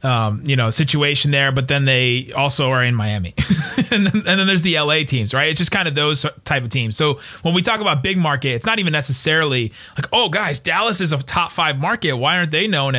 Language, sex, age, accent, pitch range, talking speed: English, male, 30-49, American, 130-175 Hz, 240 wpm